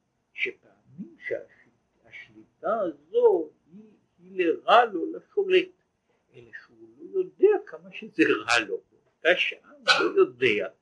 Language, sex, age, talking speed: Hebrew, male, 60-79, 105 wpm